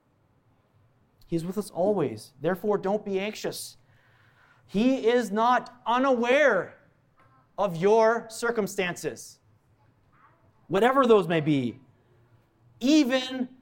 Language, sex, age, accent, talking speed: English, male, 30-49, American, 90 wpm